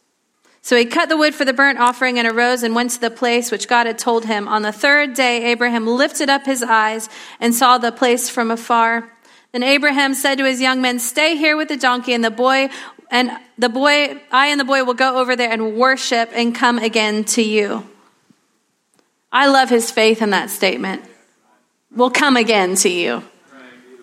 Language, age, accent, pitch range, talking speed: English, 30-49, American, 230-275 Hz, 200 wpm